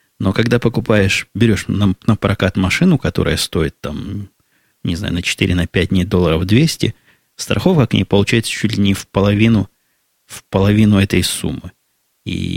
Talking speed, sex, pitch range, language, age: 160 wpm, male, 90-115 Hz, Russian, 20-39